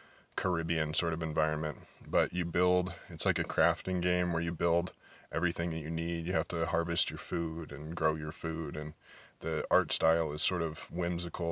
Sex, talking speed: male, 195 wpm